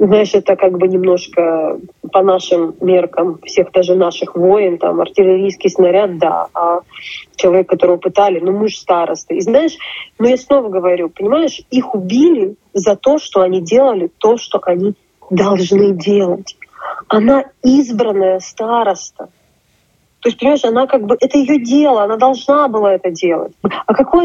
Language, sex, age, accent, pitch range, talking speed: Russian, female, 20-39, native, 190-250 Hz, 155 wpm